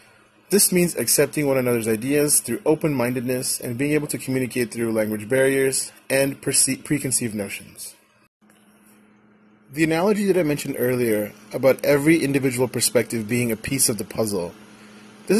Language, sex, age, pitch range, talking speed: English, male, 30-49, 115-140 Hz, 140 wpm